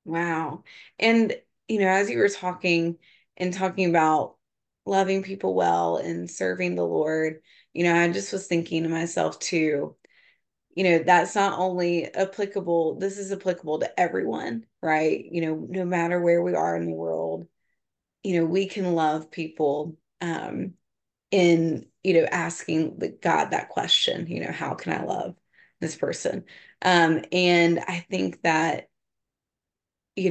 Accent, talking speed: American, 150 wpm